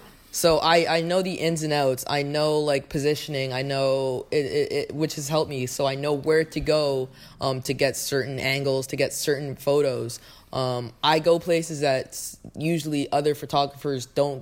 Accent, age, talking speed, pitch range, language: American, 20-39, 185 wpm, 130-150 Hz, English